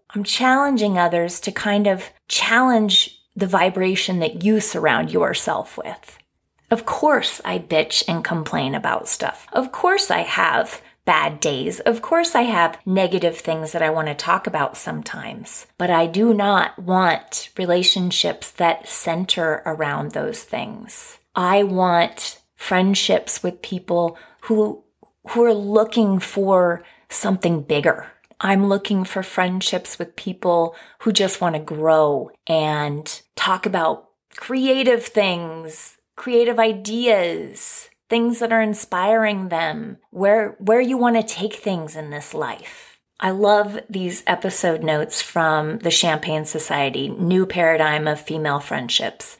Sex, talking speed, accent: female, 135 wpm, American